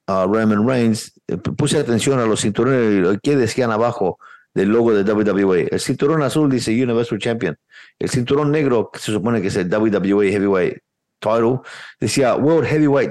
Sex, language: male, English